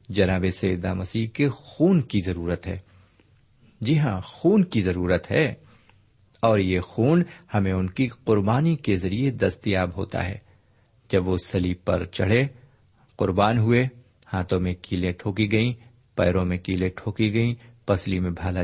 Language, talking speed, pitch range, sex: Urdu, 150 wpm, 95-125 Hz, male